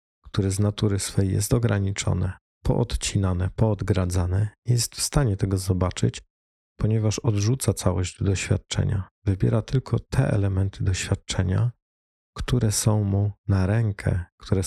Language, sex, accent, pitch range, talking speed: Polish, male, native, 95-110 Hz, 120 wpm